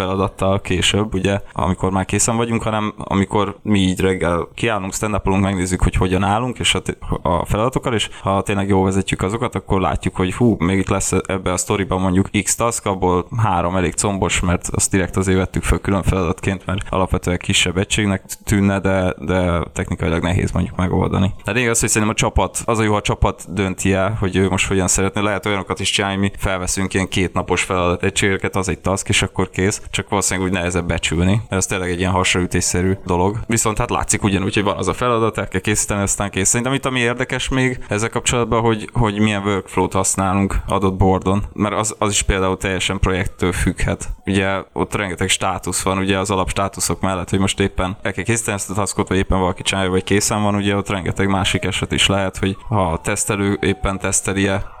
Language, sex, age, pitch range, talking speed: Hungarian, male, 20-39, 95-105 Hz, 200 wpm